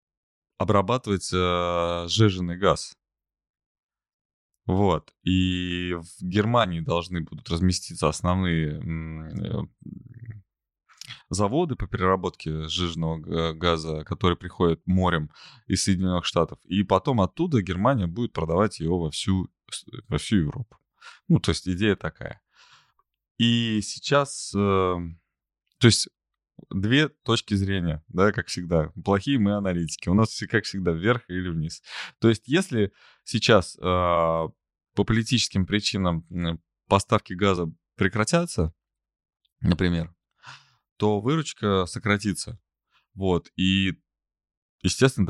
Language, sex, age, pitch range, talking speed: Russian, male, 20-39, 85-110 Hz, 110 wpm